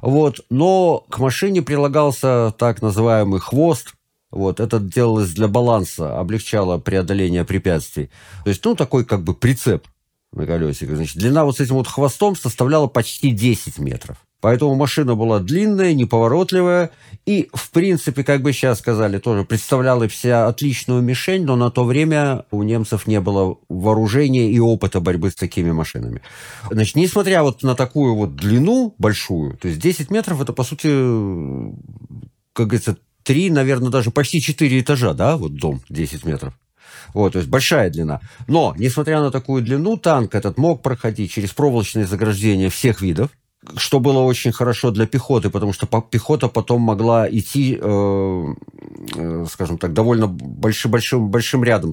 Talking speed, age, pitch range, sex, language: 155 wpm, 50-69, 105-140 Hz, male, Russian